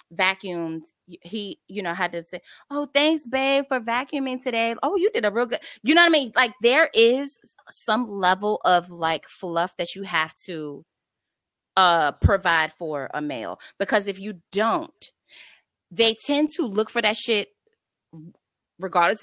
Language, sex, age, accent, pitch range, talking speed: English, female, 20-39, American, 180-255 Hz, 165 wpm